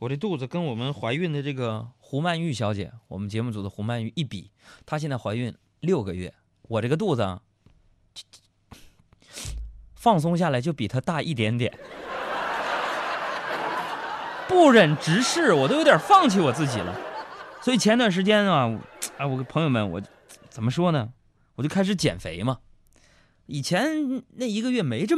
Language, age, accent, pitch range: Chinese, 20-39, native, 110-150 Hz